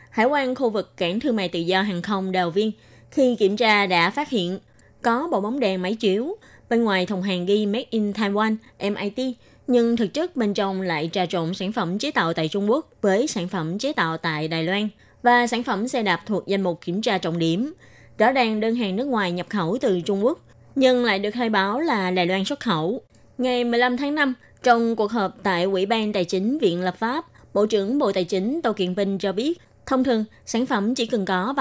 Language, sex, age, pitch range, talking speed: Vietnamese, female, 20-39, 185-245 Hz, 230 wpm